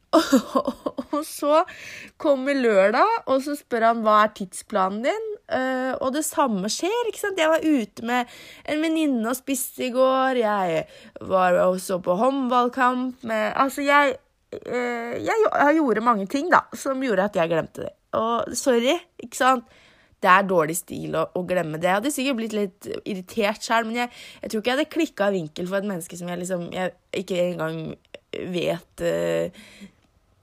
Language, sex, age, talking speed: English, female, 20-39, 165 wpm